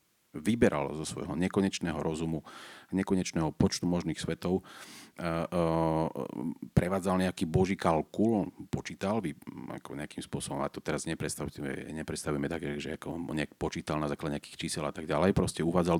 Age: 40-59